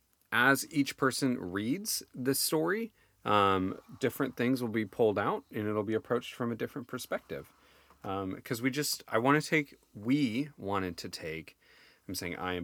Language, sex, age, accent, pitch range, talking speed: English, male, 30-49, American, 90-130 Hz, 175 wpm